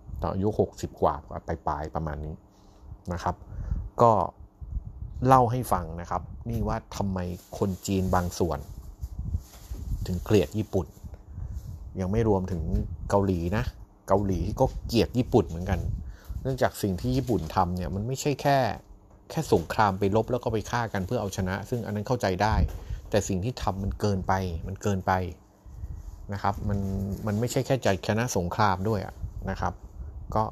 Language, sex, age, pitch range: Thai, male, 30-49, 85-105 Hz